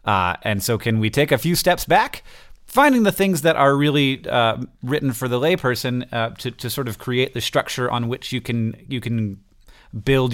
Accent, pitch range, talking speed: American, 105-125 Hz, 210 wpm